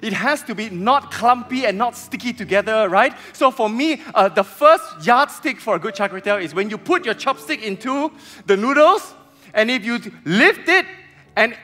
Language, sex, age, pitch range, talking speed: English, male, 20-39, 195-255 Hz, 190 wpm